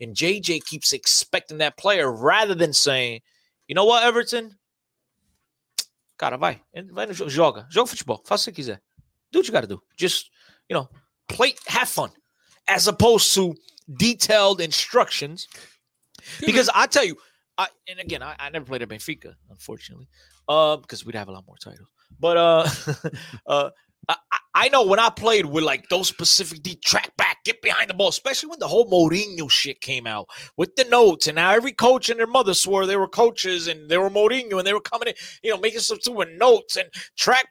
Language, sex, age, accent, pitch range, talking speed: English, male, 30-49, American, 155-235 Hz, 180 wpm